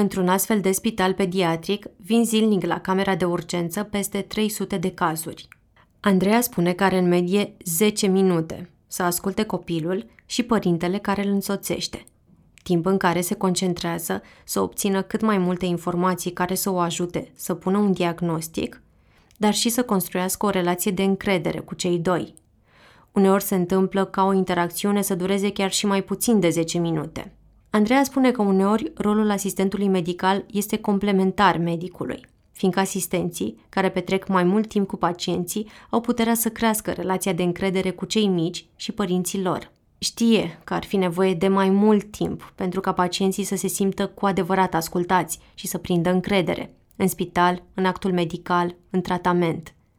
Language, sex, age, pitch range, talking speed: Romanian, female, 20-39, 180-200 Hz, 165 wpm